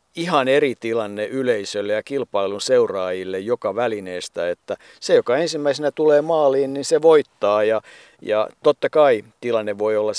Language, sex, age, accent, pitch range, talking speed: Finnish, male, 50-69, native, 105-160 Hz, 145 wpm